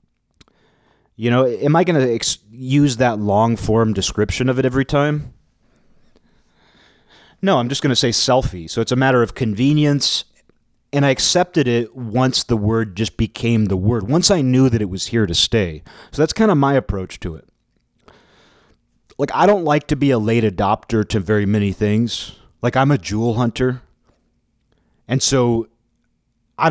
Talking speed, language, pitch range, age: 175 wpm, English, 100-130 Hz, 30-49